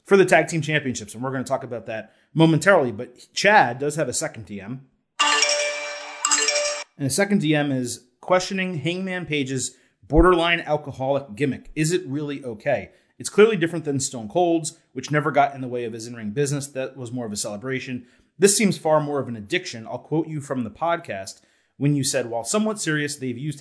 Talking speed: 200 wpm